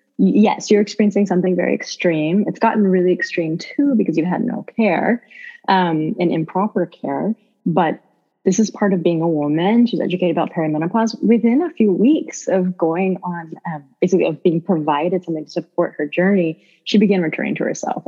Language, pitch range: English, 170-220 Hz